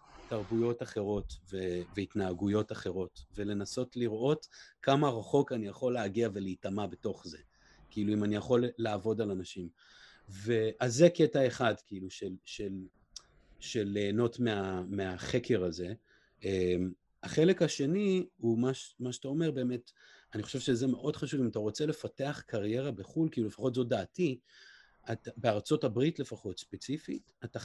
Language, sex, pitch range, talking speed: Hebrew, male, 100-130 Hz, 140 wpm